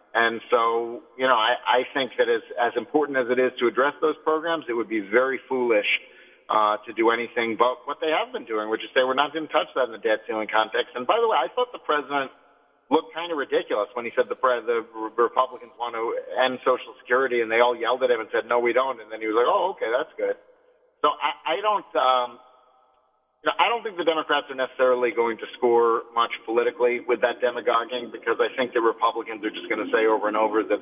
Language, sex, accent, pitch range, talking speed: English, male, American, 120-155 Hz, 240 wpm